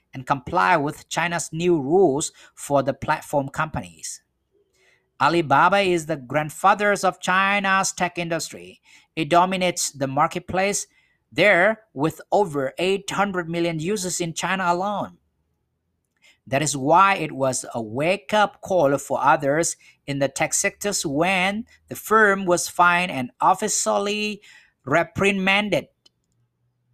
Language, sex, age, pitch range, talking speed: English, male, 50-69, 140-195 Hz, 120 wpm